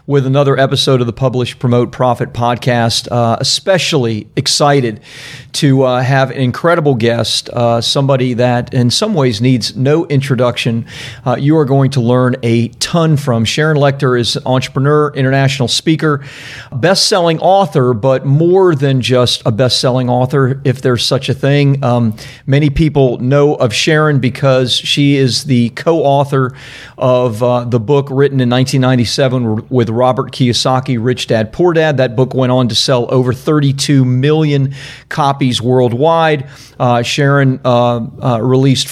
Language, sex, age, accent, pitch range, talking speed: English, male, 40-59, American, 125-145 Hz, 150 wpm